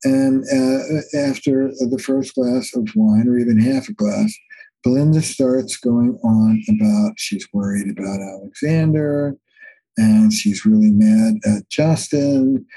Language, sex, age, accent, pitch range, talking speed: English, male, 60-79, American, 130-220 Hz, 130 wpm